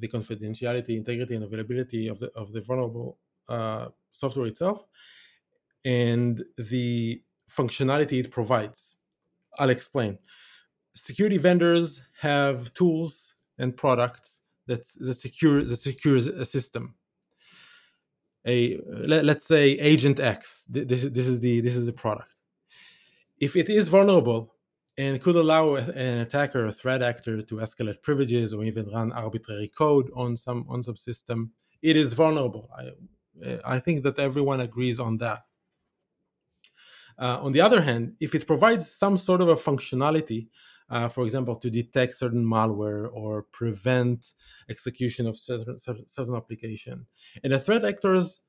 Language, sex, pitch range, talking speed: English, male, 120-155 Hz, 145 wpm